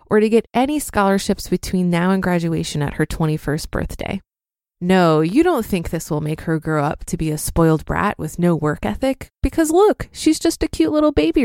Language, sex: English, female